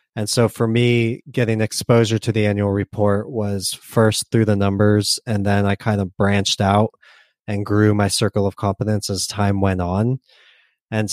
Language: English